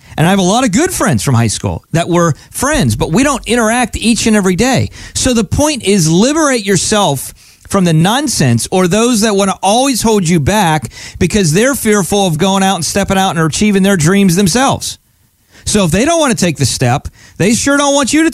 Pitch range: 160-225 Hz